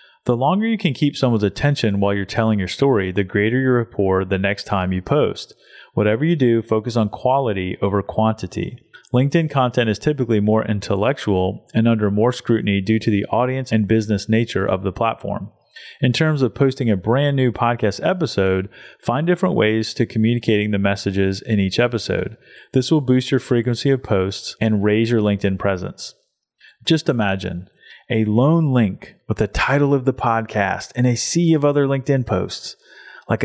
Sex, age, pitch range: male, 30-49, 100-130 Hz